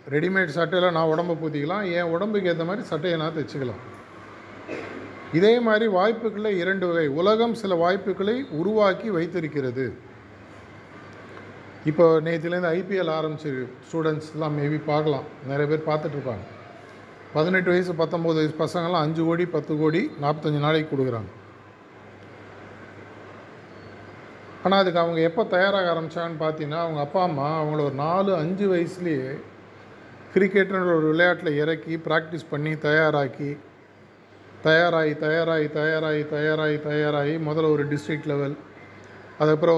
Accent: native